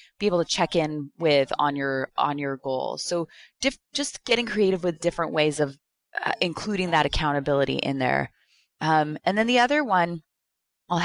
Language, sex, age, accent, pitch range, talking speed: English, female, 20-39, American, 155-195 Hz, 175 wpm